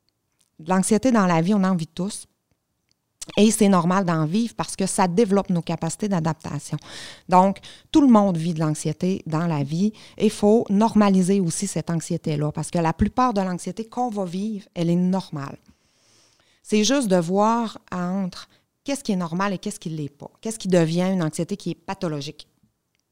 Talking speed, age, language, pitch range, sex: 185 wpm, 30-49, French, 170-210 Hz, female